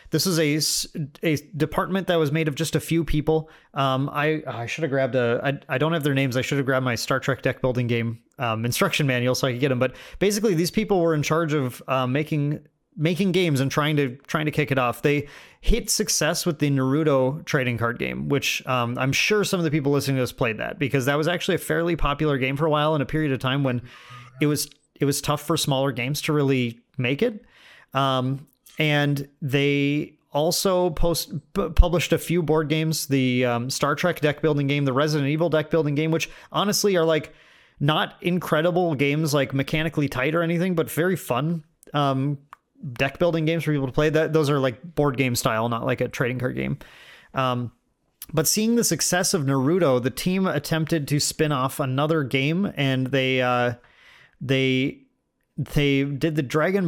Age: 30-49